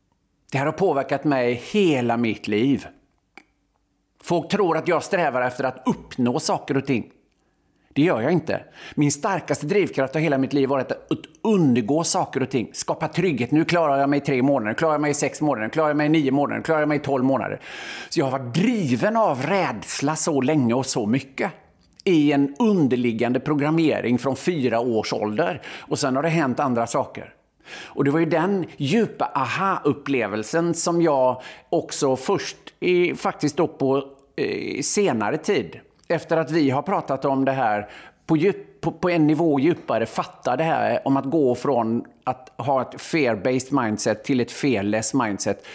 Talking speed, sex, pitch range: 185 wpm, male, 130-165 Hz